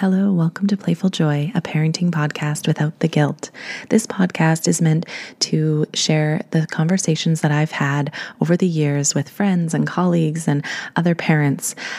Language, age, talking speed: English, 20-39, 160 wpm